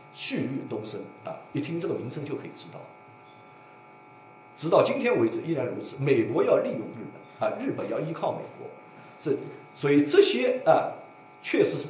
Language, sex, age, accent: Chinese, male, 50-69, native